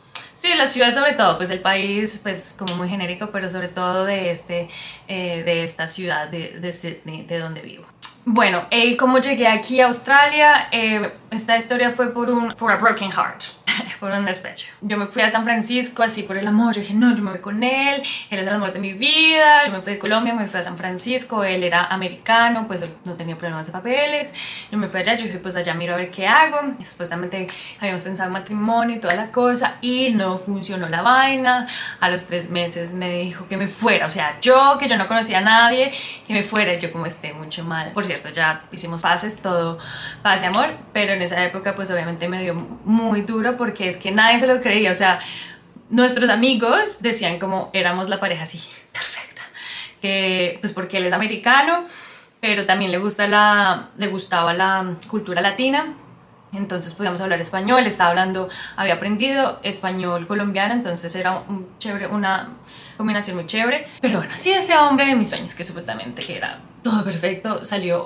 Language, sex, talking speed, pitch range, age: Spanish, female, 200 wpm, 180-235 Hz, 20-39